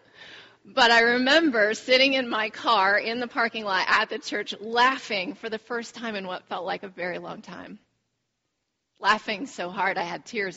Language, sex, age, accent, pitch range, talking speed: English, female, 30-49, American, 180-220 Hz, 185 wpm